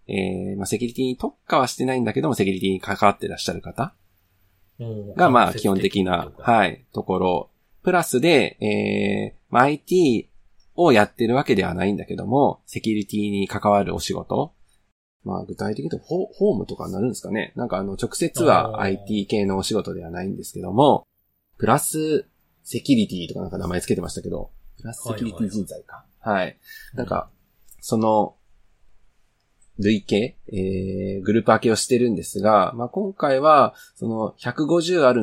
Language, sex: Japanese, male